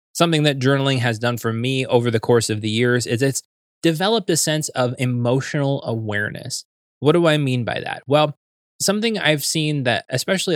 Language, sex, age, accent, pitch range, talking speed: English, male, 20-39, American, 120-155 Hz, 190 wpm